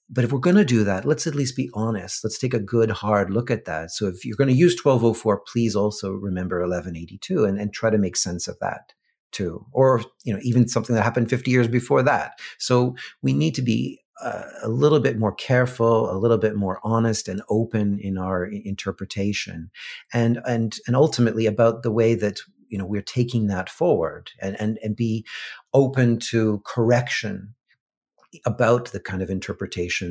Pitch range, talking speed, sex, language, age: 100-120 Hz, 195 wpm, male, English, 40-59